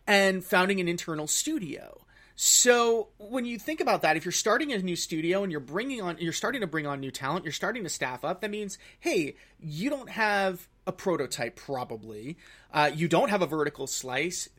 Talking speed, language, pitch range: 200 wpm, English, 150-215 Hz